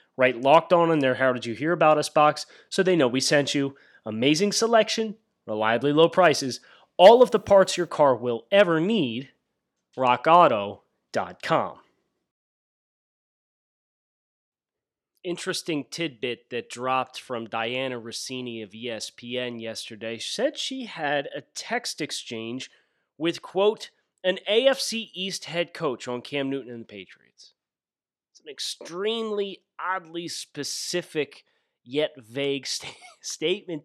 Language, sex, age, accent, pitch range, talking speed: English, male, 30-49, American, 125-180 Hz, 120 wpm